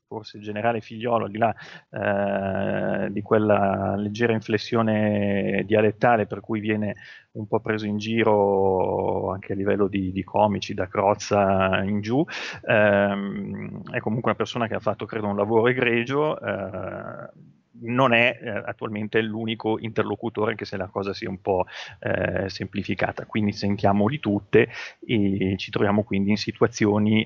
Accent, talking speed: native, 155 wpm